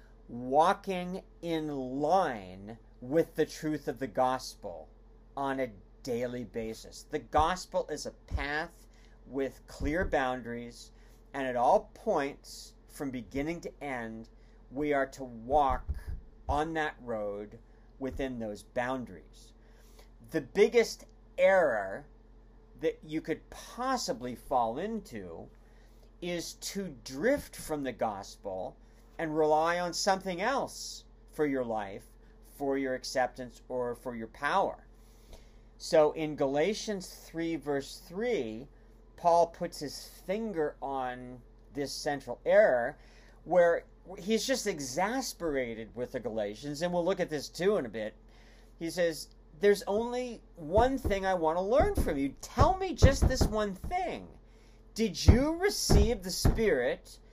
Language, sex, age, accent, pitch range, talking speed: English, male, 40-59, American, 110-170 Hz, 130 wpm